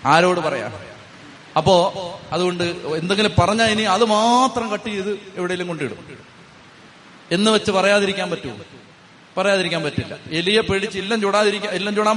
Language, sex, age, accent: Malayalam, male, 30-49, native